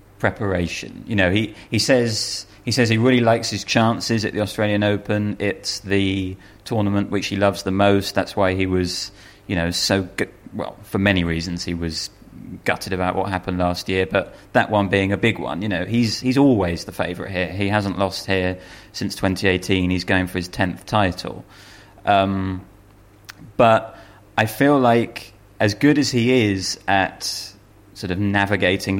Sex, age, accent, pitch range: male, 30-49, British, 95-110 Hz